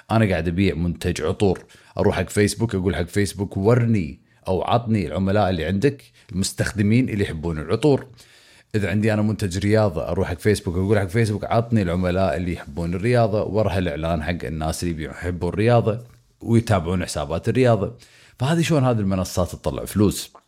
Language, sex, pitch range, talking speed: Arabic, male, 90-115 Hz, 155 wpm